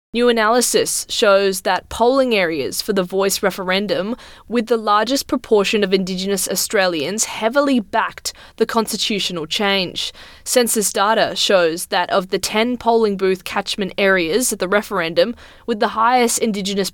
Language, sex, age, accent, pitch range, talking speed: English, female, 20-39, Australian, 195-230 Hz, 140 wpm